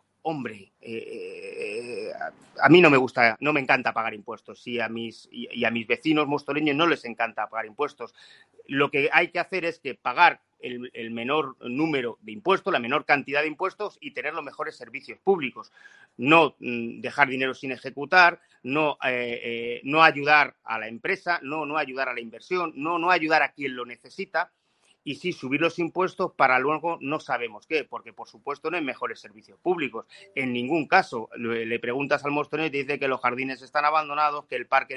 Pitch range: 130-165 Hz